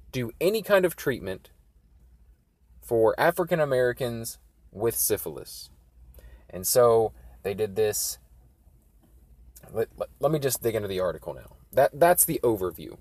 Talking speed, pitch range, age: 130 wpm, 90-135 Hz, 20-39